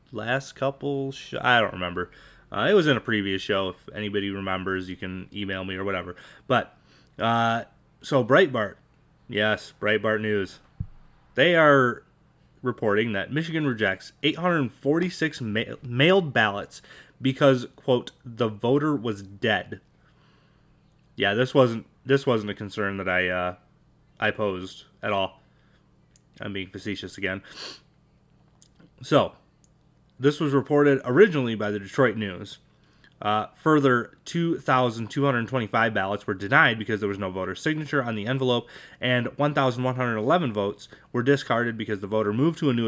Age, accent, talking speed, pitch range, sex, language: 20-39, American, 140 wpm, 105-140 Hz, male, English